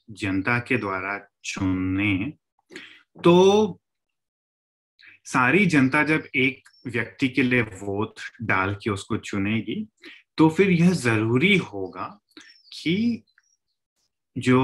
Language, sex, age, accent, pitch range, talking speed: Hindi, male, 30-49, native, 105-170 Hz, 100 wpm